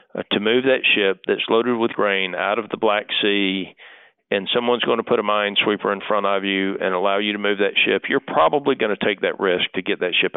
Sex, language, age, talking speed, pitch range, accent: male, English, 50-69, 245 wpm, 95-115 Hz, American